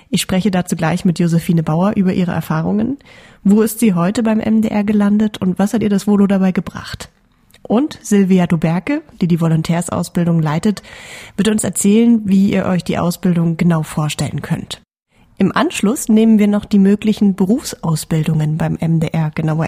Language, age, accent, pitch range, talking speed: German, 30-49, German, 165-210 Hz, 165 wpm